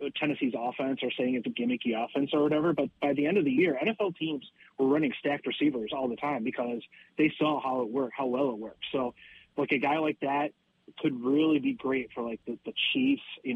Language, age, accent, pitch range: English, 30-49, American, 130-155 Hz